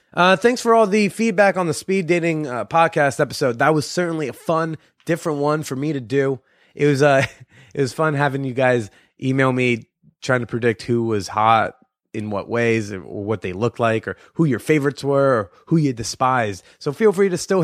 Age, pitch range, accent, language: 20-39, 125-165 Hz, American, English